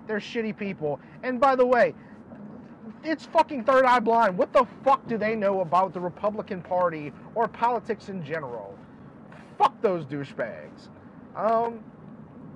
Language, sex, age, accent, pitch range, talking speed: English, male, 30-49, American, 180-245 Hz, 145 wpm